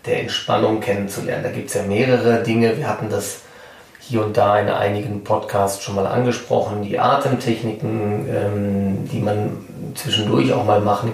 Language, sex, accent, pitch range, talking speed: German, male, German, 110-125 Hz, 155 wpm